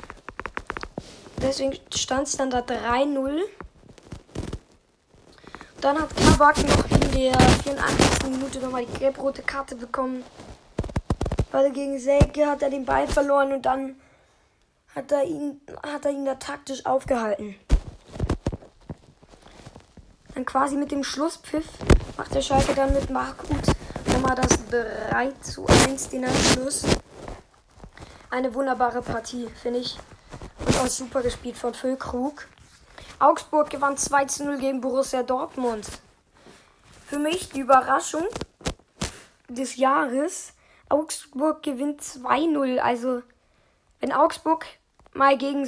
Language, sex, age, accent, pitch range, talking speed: German, female, 20-39, German, 255-285 Hz, 115 wpm